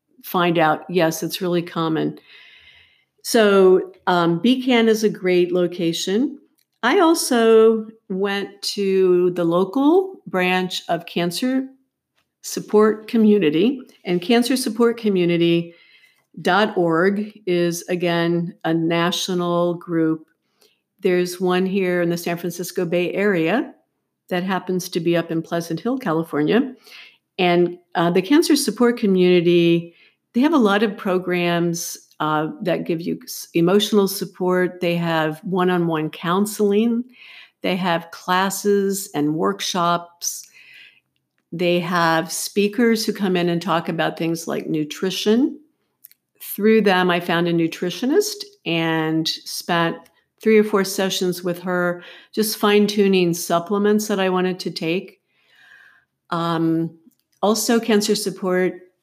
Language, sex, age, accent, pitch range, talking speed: English, female, 50-69, American, 170-210 Hz, 115 wpm